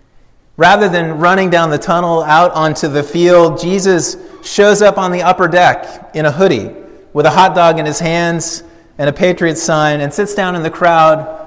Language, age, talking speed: English, 30-49, 195 wpm